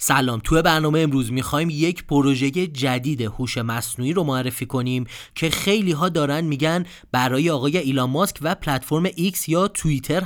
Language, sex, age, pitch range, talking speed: Persian, male, 30-49, 130-180 Hz, 160 wpm